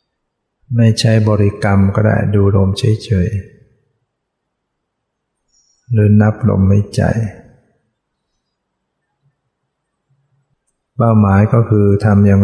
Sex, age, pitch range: male, 60-79, 95-115 Hz